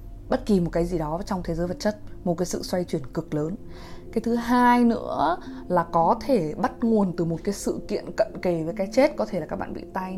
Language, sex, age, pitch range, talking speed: Vietnamese, female, 20-39, 165-220 Hz, 260 wpm